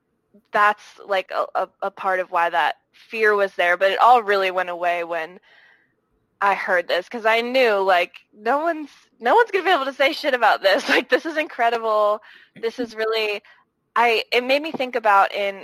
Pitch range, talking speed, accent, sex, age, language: 185-230 Hz, 205 wpm, American, female, 20-39, English